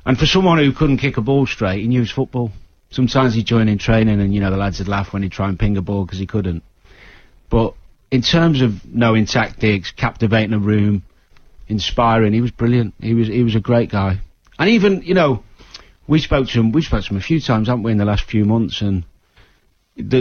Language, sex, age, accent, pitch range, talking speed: English, male, 40-59, British, 95-120 Hz, 230 wpm